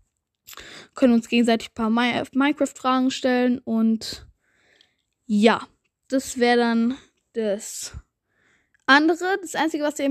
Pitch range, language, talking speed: 235-300 Hz, German, 105 wpm